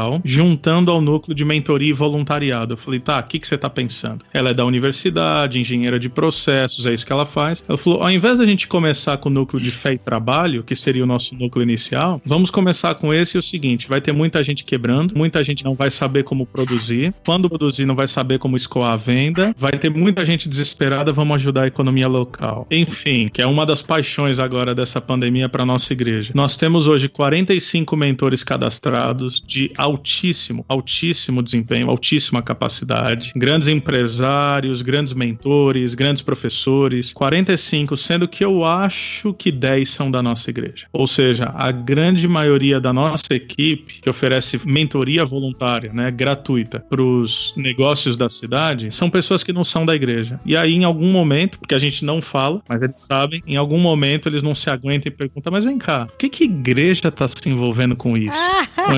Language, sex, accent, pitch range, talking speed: Portuguese, male, Brazilian, 125-155 Hz, 195 wpm